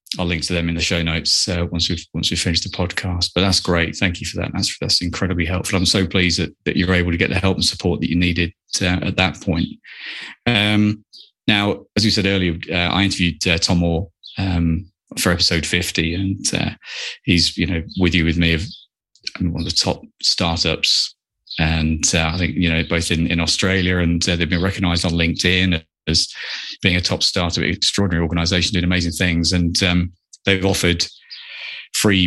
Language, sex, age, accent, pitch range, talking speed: English, male, 20-39, British, 85-95 Hz, 210 wpm